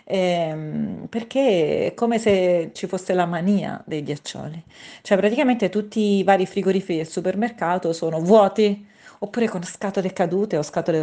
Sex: female